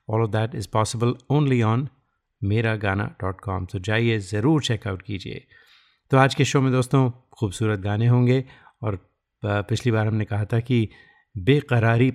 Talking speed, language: 165 wpm, Hindi